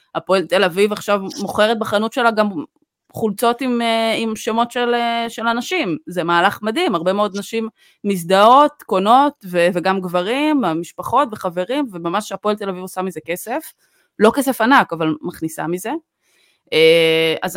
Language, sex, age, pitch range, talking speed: Hebrew, female, 20-39, 165-225 Hz, 145 wpm